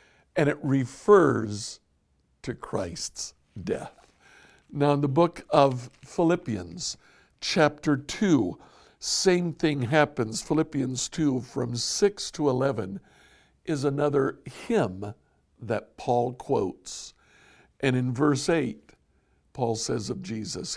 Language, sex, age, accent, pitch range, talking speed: English, male, 60-79, American, 110-150 Hz, 105 wpm